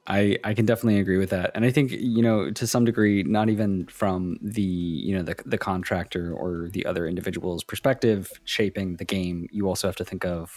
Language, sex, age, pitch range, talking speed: English, male, 20-39, 90-110 Hz, 215 wpm